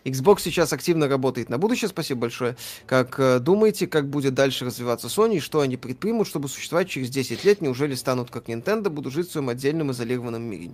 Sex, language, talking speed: male, Russian, 200 wpm